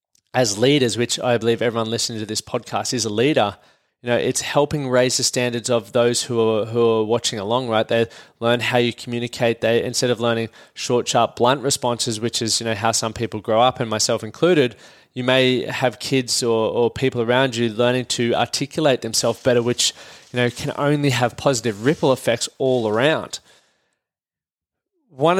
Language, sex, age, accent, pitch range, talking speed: English, male, 20-39, Australian, 115-125 Hz, 190 wpm